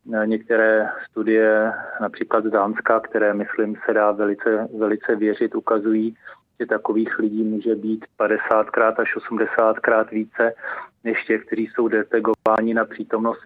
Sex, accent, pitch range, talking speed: male, native, 110-120 Hz, 135 wpm